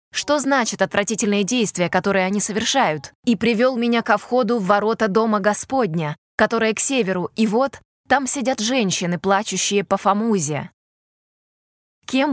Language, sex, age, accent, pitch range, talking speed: Russian, female, 20-39, native, 195-245 Hz, 135 wpm